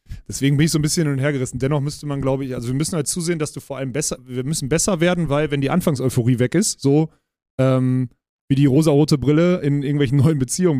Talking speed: 250 wpm